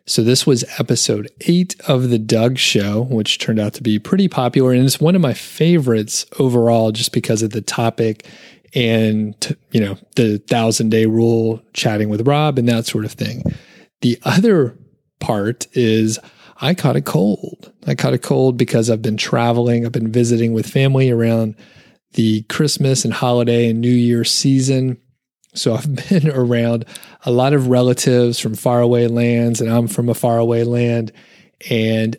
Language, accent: English, American